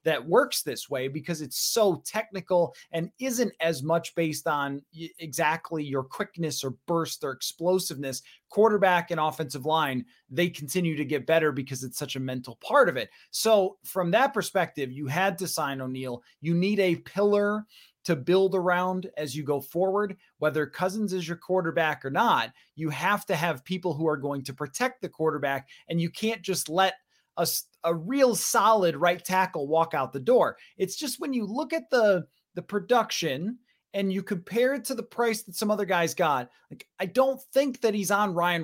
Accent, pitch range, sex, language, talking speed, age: American, 155-215 Hz, male, English, 190 wpm, 30-49